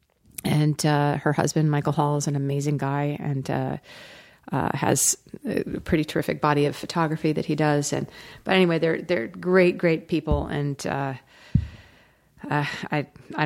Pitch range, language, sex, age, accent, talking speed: 140-160 Hz, English, female, 40-59, American, 160 wpm